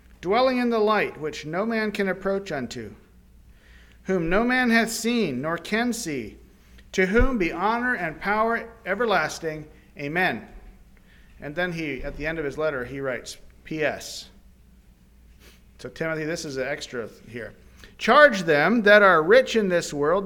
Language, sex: English, male